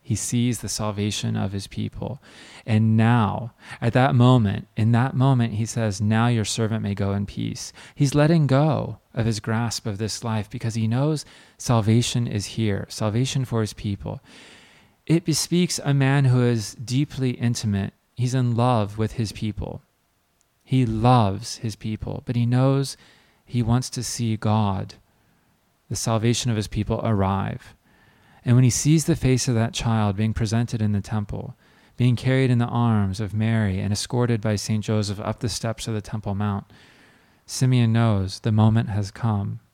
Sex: male